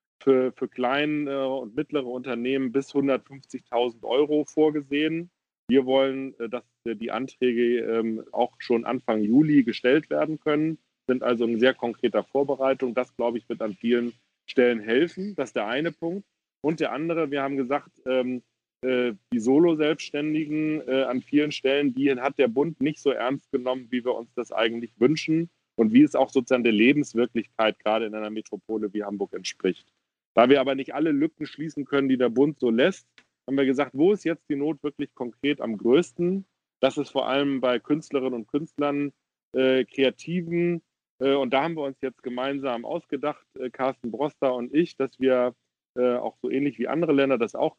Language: German